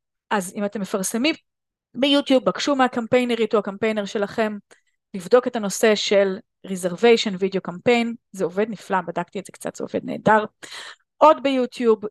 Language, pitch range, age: Hebrew, 200-250 Hz, 30-49